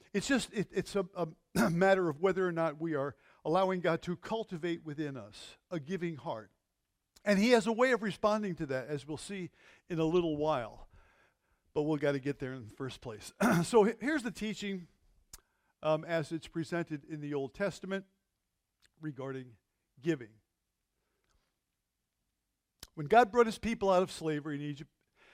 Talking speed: 170 wpm